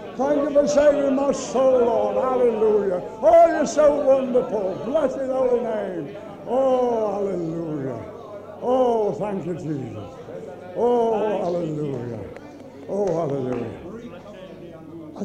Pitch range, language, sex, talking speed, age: 185-285 Hz, English, male, 100 wpm, 60-79